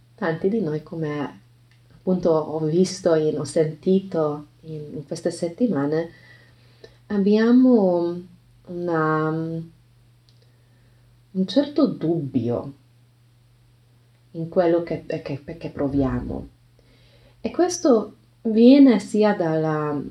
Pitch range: 135-175 Hz